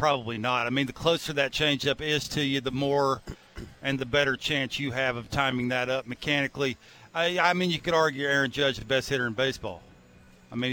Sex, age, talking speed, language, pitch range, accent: male, 50-69, 225 wpm, English, 145-185 Hz, American